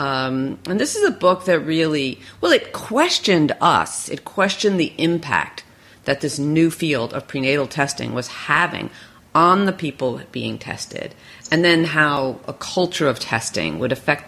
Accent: American